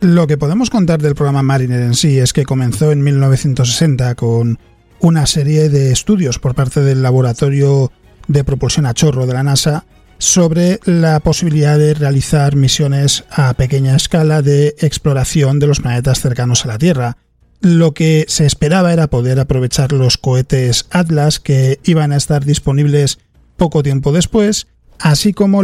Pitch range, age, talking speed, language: 135-160 Hz, 40-59, 160 wpm, Spanish